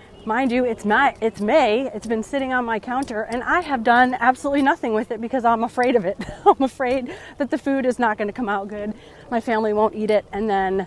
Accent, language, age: American, English, 30-49